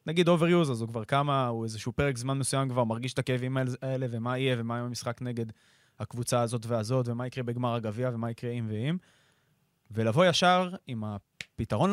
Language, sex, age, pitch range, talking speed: Hebrew, male, 20-39, 115-150 Hz, 185 wpm